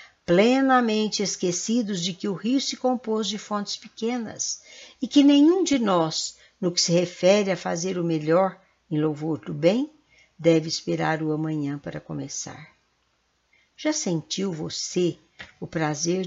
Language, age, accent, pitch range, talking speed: Portuguese, 60-79, Brazilian, 160-225 Hz, 145 wpm